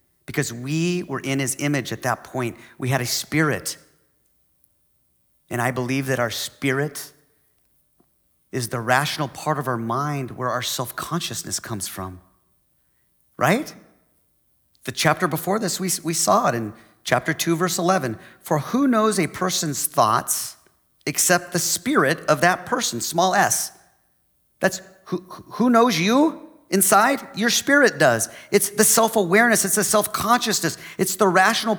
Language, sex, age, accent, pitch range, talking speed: English, male, 40-59, American, 135-210 Hz, 145 wpm